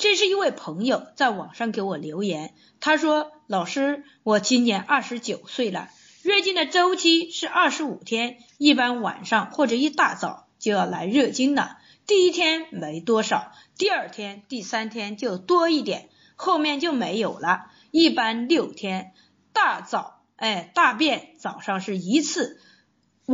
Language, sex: Chinese, female